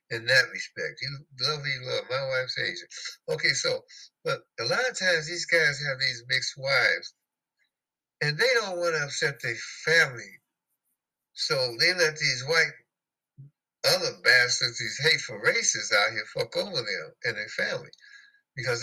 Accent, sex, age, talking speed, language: American, male, 60-79, 160 wpm, English